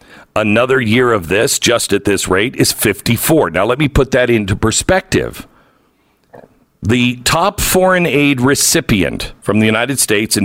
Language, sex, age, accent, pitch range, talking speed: English, male, 50-69, American, 110-160 Hz, 155 wpm